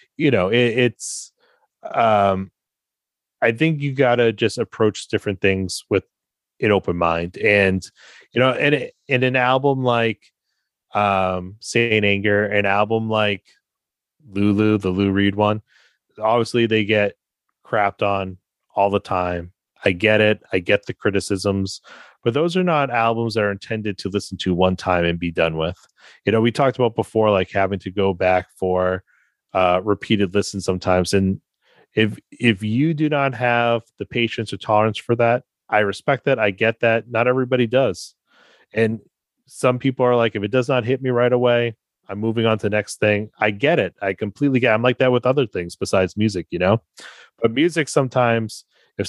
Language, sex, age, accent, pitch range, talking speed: English, male, 30-49, American, 100-125 Hz, 180 wpm